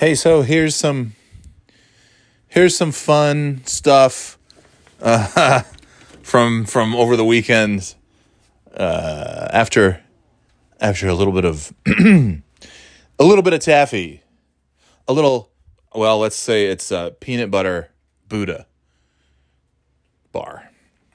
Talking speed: 105 wpm